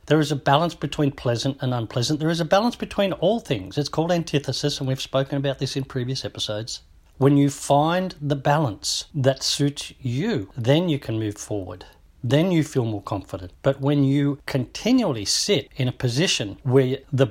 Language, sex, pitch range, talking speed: English, male, 125-155 Hz, 185 wpm